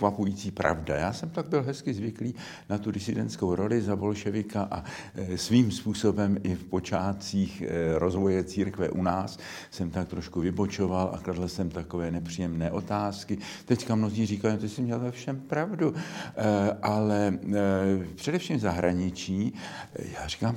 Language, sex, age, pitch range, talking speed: Slovak, male, 60-79, 85-105 Hz, 145 wpm